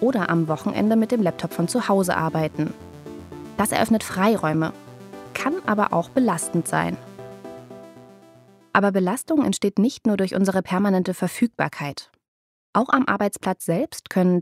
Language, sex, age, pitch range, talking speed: German, female, 20-39, 170-230 Hz, 135 wpm